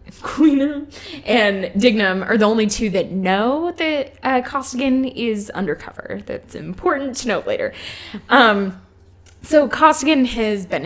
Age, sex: 10-29, female